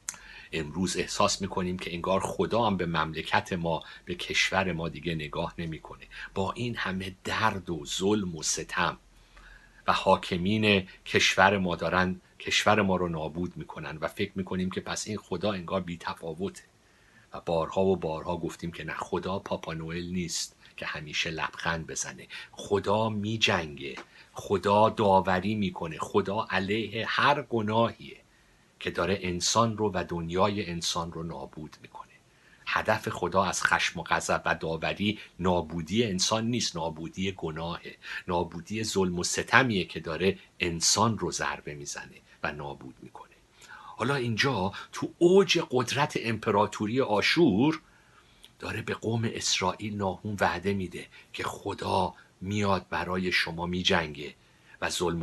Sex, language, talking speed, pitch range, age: male, Persian, 140 wpm, 85-105 Hz, 50-69